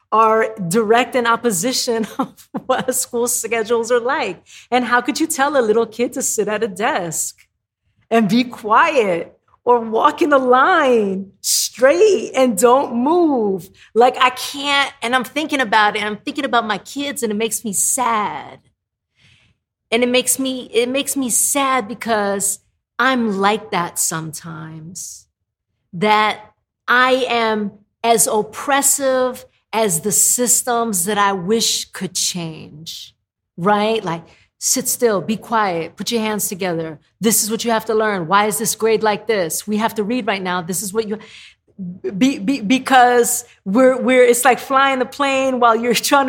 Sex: female